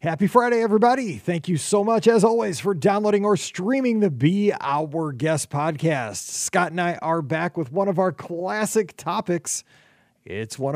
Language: English